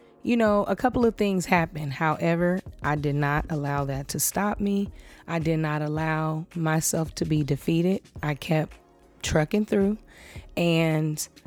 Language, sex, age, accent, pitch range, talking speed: English, female, 20-39, American, 160-200 Hz, 150 wpm